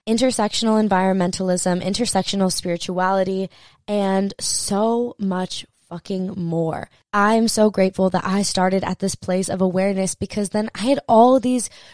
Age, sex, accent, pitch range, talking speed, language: 20-39, female, American, 170-205 Hz, 130 wpm, English